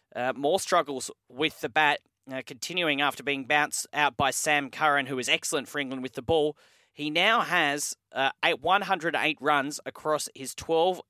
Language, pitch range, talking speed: English, 135-160 Hz, 180 wpm